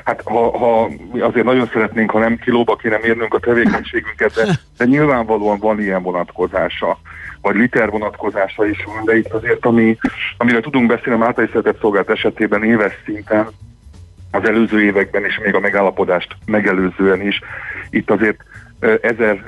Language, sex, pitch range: Hungarian, male, 95-115 Hz